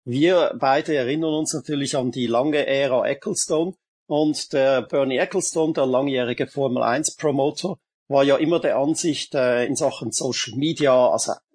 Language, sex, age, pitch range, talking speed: German, male, 50-69, 135-165 Hz, 140 wpm